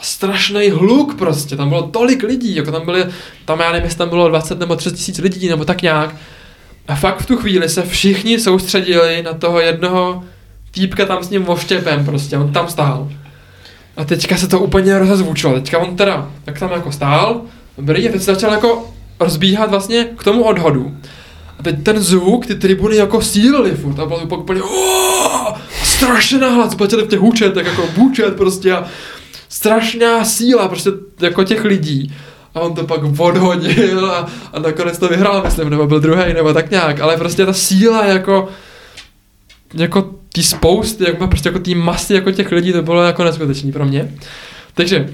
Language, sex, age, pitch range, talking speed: Czech, male, 20-39, 160-200 Hz, 180 wpm